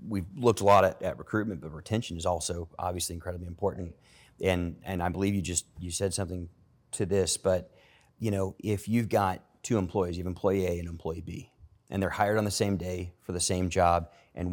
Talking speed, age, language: 215 wpm, 30-49, English